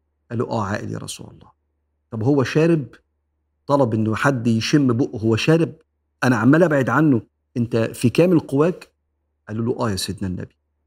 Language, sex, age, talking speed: Arabic, male, 50-69, 170 wpm